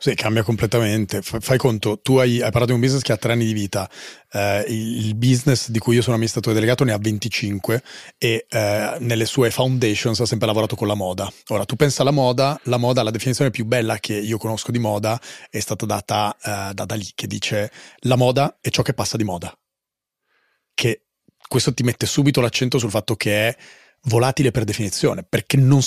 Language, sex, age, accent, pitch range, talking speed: Italian, male, 30-49, native, 105-125 Hz, 210 wpm